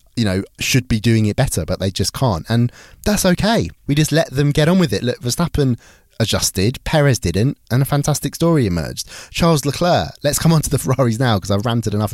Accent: British